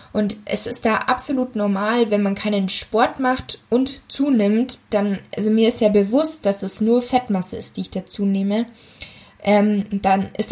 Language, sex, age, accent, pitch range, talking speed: German, female, 20-39, German, 200-235 Hz, 175 wpm